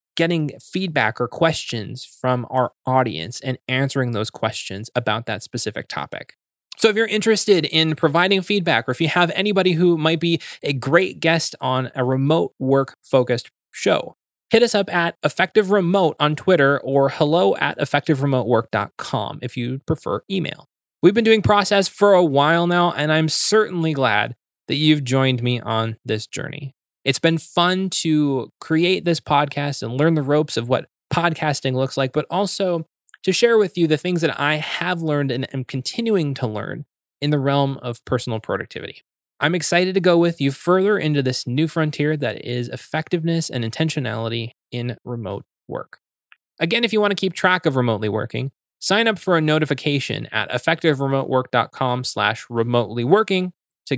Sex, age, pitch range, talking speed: male, 20-39, 125-170 Hz, 170 wpm